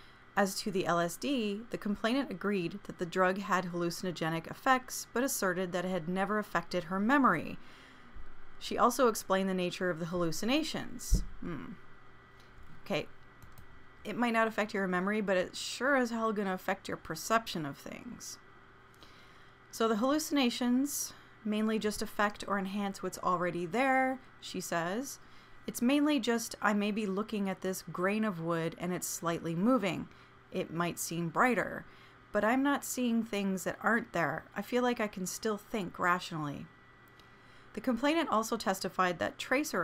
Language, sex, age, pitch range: English, female, 30-49, 180-230 Hz